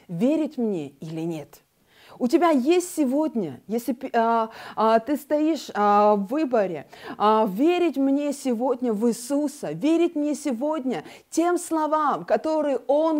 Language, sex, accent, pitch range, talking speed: Russian, female, native, 225-295 Hz, 115 wpm